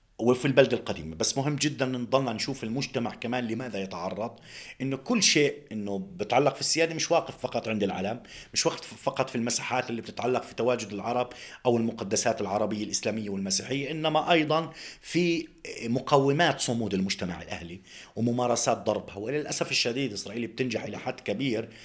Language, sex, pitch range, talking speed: Arabic, male, 115-150 Hz, 150 wpm